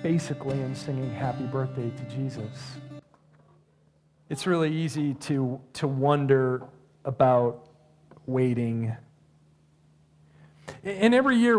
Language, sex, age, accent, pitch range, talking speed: English, male, 40-59, American, 145-190 Hz, 95 wpm